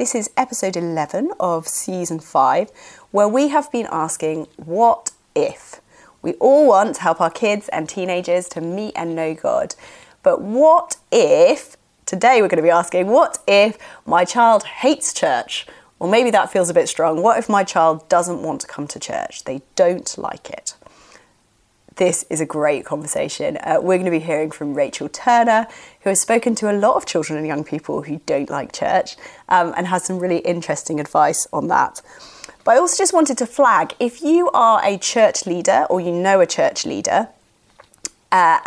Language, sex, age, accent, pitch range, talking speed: English, female, 30-49, British, 170-255 Hz, 190 wpm